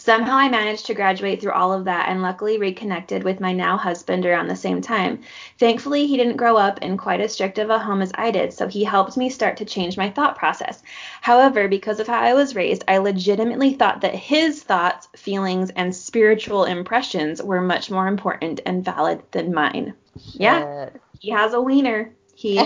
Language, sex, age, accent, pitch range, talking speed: English, female, 20-39, American, 185-235 Hz, 200 wpm